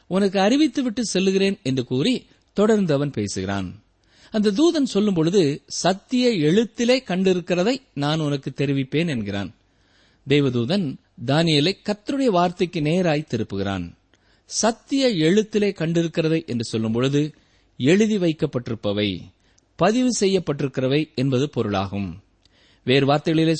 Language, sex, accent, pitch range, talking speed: Tamil, male, native, 125-200 Hz, 90 wpm